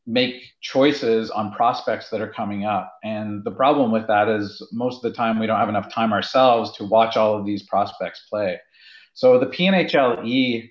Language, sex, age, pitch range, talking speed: English, male, 40-59, 100-120 Hz, 190 wpm